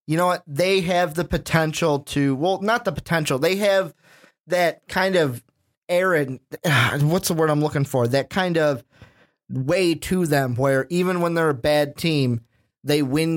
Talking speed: 175 wpm